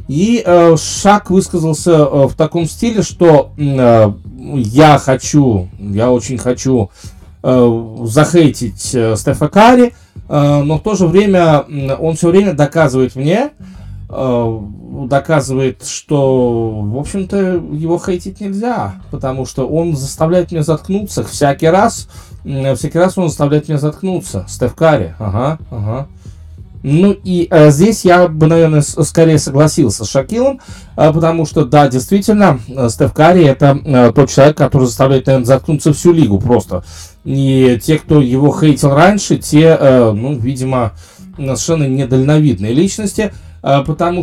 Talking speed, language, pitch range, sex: 125 wpm, Russian, 125-170 Hz, male